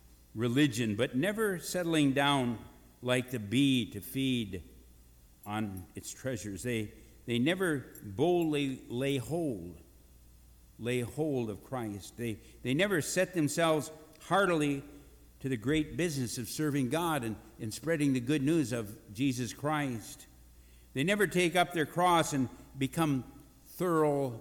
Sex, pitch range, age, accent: male, 80-135 Hz, 60-79, American